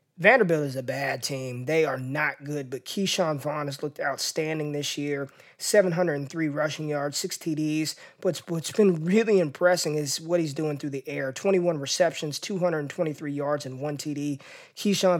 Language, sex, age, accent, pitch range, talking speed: English, male, 20-39, American, 140-175 Hz, 170 wpm